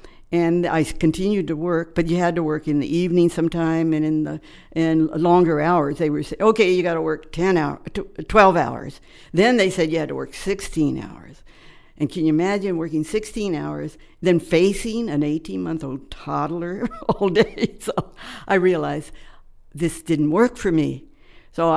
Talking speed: 175 wpm